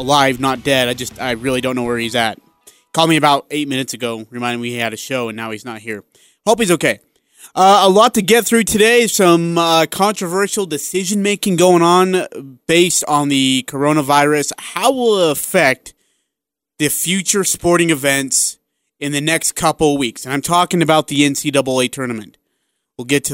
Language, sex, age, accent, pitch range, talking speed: English, male, 30-49, American, 130-165 Hz, 185 wpm